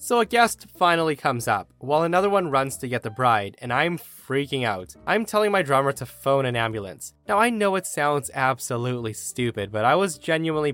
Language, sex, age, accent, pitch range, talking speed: English, male, 20-39, American, 120-170 Hz, 205 wpm